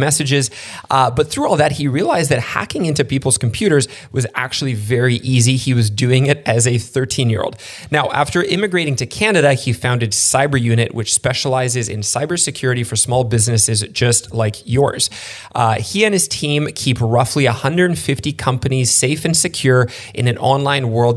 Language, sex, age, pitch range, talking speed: English, male, 20-39, 115-140 Hz, 165 wpm